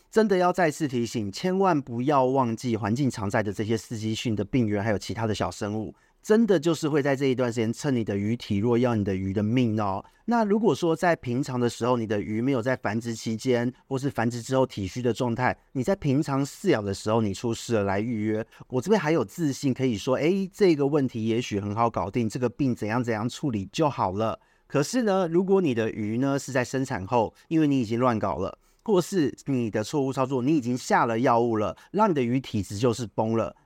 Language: Chinese